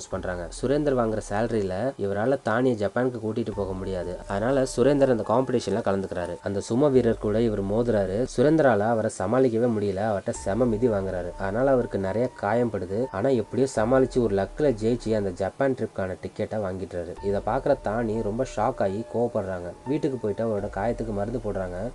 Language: Tamil